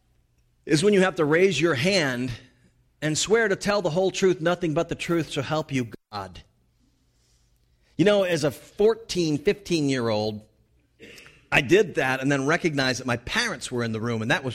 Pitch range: 110-155 Hz